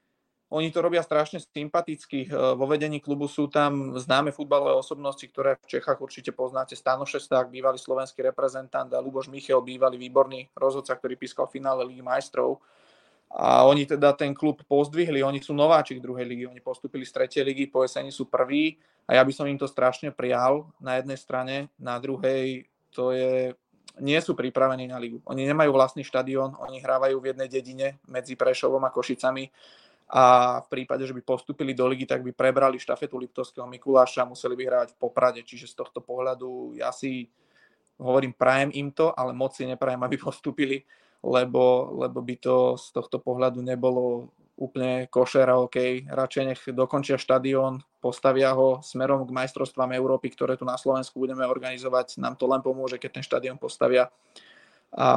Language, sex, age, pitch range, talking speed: Czech, male, 20-39, 125-135 Hz, 175 wpm